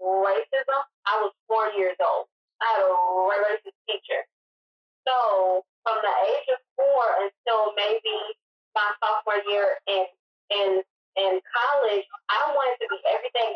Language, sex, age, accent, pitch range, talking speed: English, female, 20-39, American, 195-255 Hz, 135 wpm